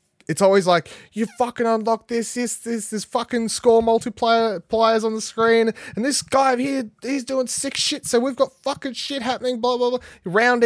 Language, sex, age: English, male, 20-39